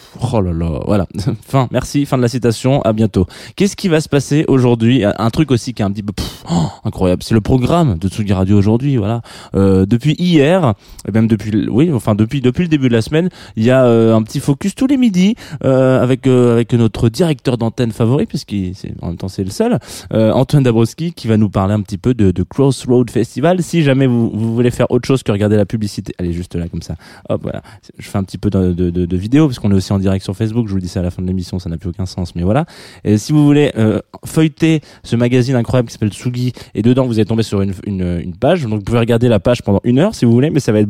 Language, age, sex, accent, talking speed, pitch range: French, 20-39, male, French, 270 wpm, 100-130 Hz